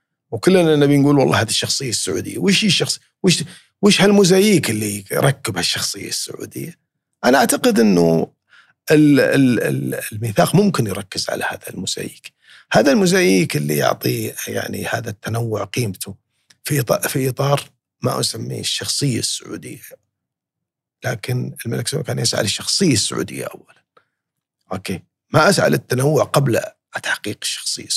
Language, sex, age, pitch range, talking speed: Arabic, male, 50-69, 115-160 Hz, 120 wpm